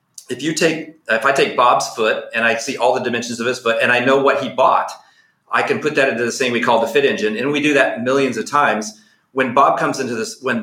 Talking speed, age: 270 wpm, 40-59